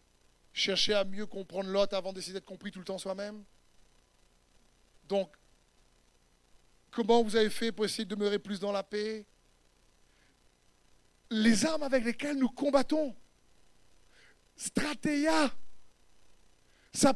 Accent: French